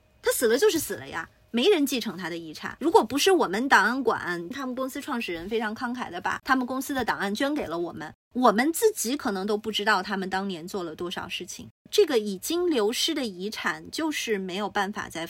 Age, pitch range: 30-49, 200-335 Hz